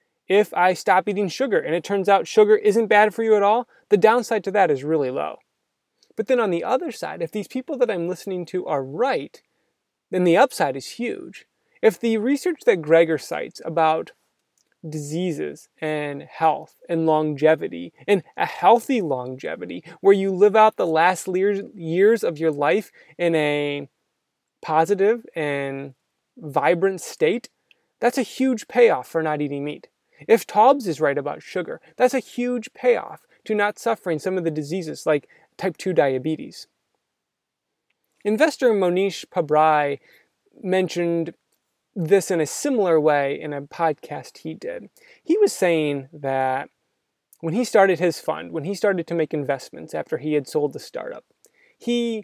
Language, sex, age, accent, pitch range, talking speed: English, male, 20-39, American, 155-220 Hz, 160 wpm